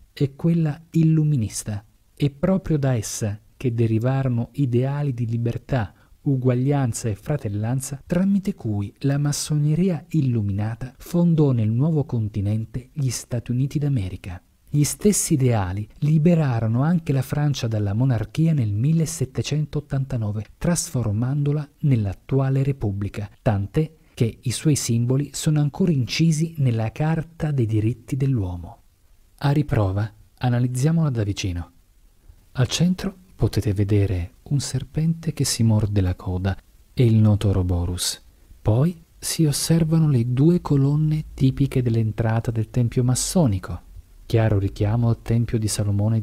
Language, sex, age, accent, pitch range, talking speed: Italian, male, 40-59, native, 105-150 Hz, 120 wpm